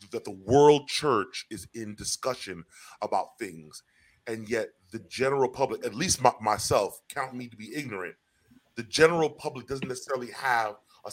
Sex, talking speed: female, 150 wpm